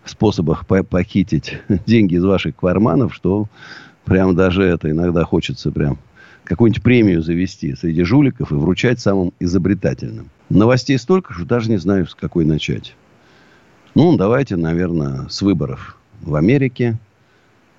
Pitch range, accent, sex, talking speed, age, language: 90-135 Hz, native, male, 130 wpm, 50-69, Russian